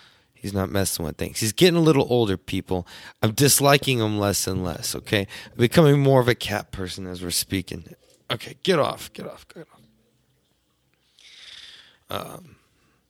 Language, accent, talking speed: English, American, 165 wpm